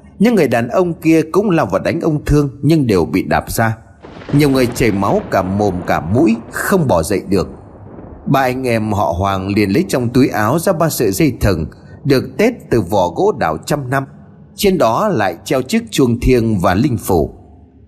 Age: 30-49